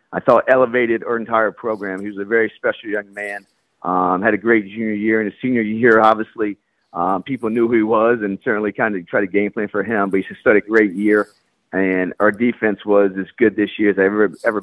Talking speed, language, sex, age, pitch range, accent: 240 wpm, English, male, 40-59, 105-125 Hz, American